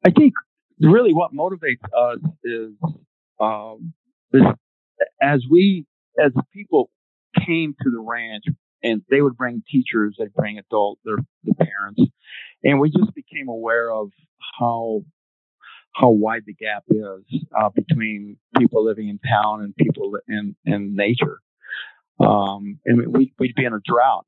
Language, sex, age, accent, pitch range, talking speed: English, male, 50-69, American, 110-150 Hz, 145 wpm